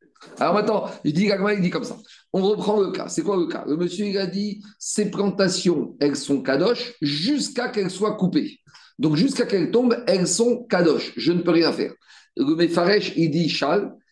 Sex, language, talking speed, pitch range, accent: male, French, 190 wpm, 160-215 Hz, French